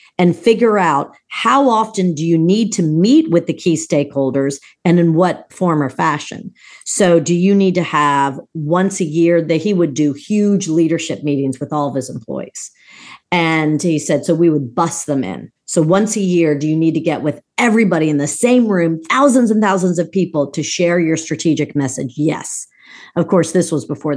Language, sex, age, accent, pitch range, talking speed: English, female, 40-59, American, 145-175 Hz, 205 wpm